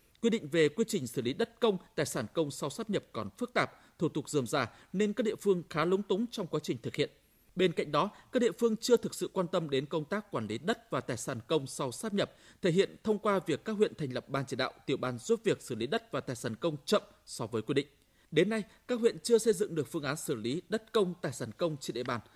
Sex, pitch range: male, 140-210 Hz